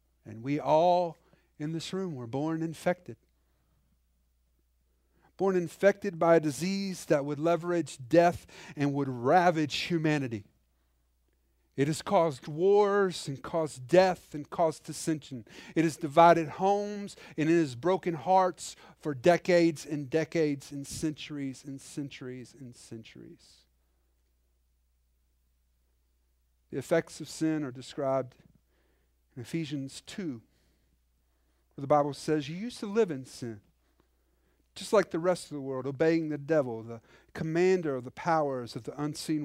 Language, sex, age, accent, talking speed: English, male, 50-69, American, 130 wpm